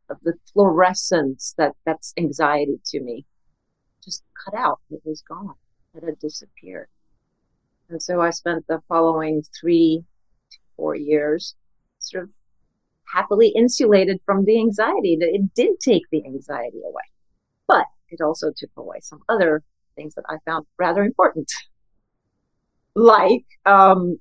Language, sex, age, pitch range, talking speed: English, female, 40-59, 165-220 Hz, 140 wpm